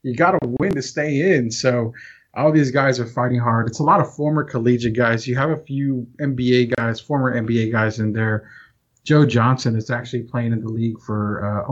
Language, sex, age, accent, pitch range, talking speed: English, male, 30-49, American, 115-140 Hz, 215 wpm